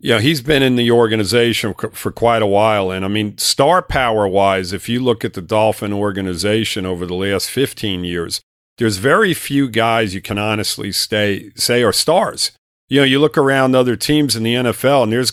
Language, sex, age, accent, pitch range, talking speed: English, male, 50-69, American, 105-130 Hz, 210 wpm